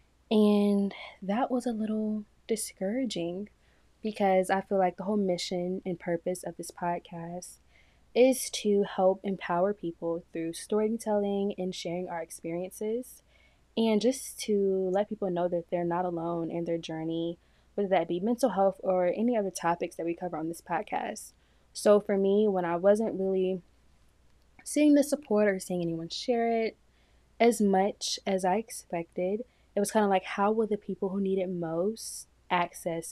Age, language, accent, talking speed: 10-29, English, American, 165 wpm